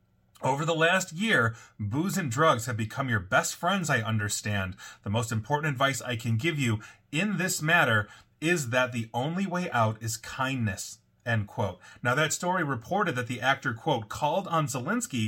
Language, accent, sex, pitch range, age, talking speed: English, American, male, 115-160 Hz, 30-49, 180 wpm